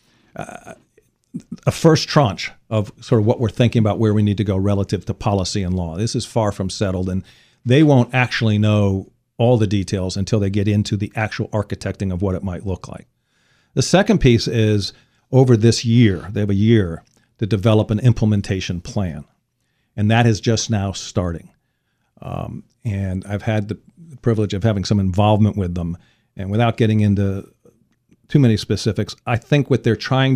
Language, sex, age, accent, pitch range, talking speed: English, male, 50-69, American, 100-120 Hz, 185 wpm